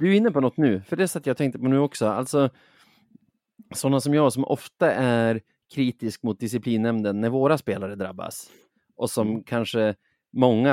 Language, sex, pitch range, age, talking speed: Swedish, male, 105-135 Hz, 30-49, 190 wpm